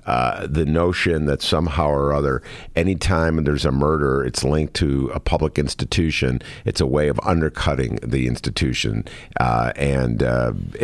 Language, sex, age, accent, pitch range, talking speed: English, male, 50-69, American, 70-80 Hz, 150 wpm